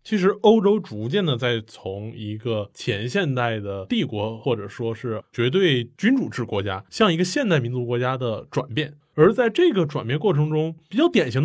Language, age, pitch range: Chinese, 20-39, 120-190 Hz